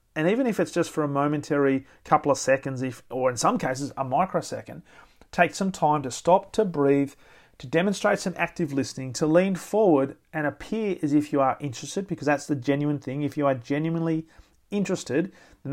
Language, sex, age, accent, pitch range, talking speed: English, male, 40-59, Australian, 135-175 Hz, 195 wpm